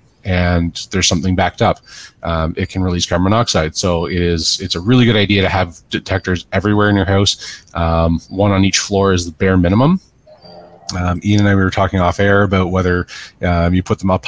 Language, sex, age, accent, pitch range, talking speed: English, male, 30-49, American, 90-110 Hz, 215 wpm